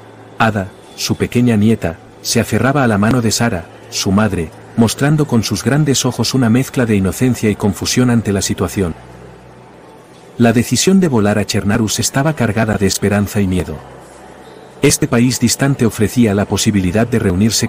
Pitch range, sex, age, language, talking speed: 100-120 Hz, male, 40-59, Spanish, 160 wpm